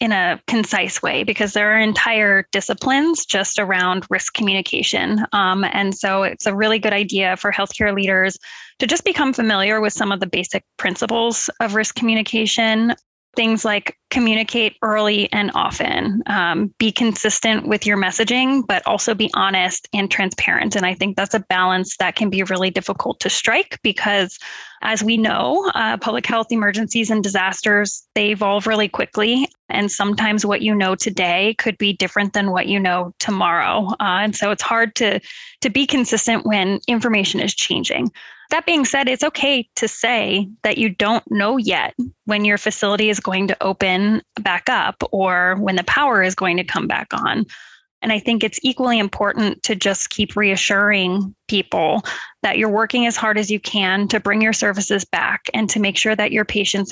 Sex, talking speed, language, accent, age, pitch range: female, 180 wpm, English, American, 10-29, 195-230 Hz